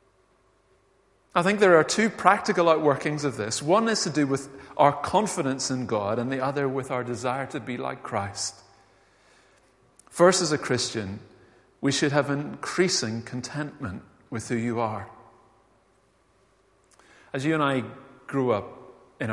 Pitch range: 100-140 Hz